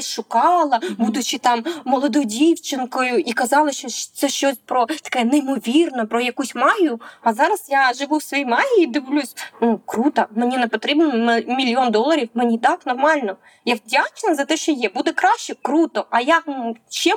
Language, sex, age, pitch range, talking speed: Ukrainian, female, 20-39, 240-320 Hz, 160 wpm